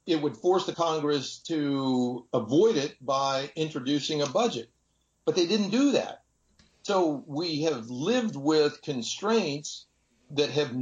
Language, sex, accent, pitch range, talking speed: English, male, American, 125-165 Hz, 140 wpm